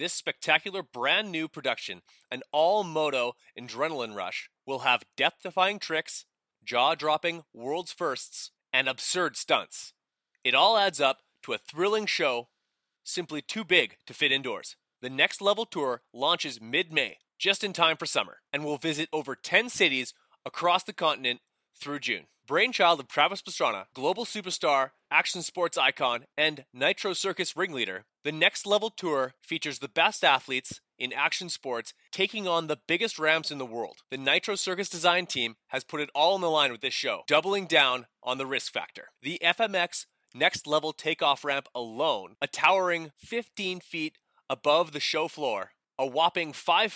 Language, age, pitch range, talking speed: English, 30-49, 140-185 Hz, 160 wpm